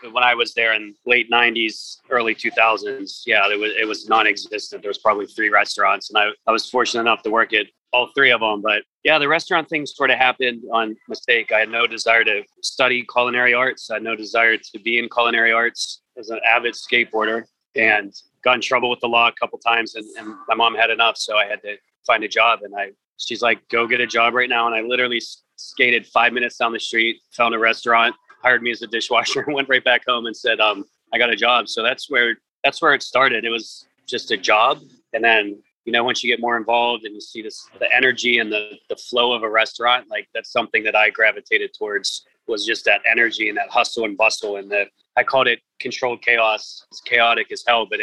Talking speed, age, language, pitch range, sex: 235 wpm, 30-49, English, 115-125 Hz, male